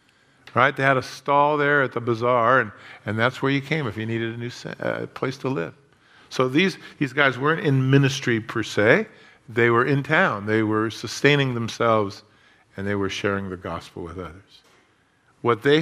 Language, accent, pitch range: English, American, 110-140 Hz